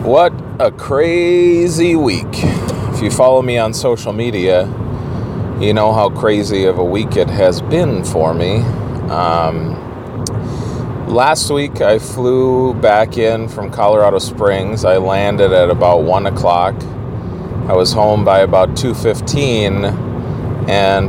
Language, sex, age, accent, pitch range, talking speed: English, male, 30-49, American, 95-125 Hz, 135 wpm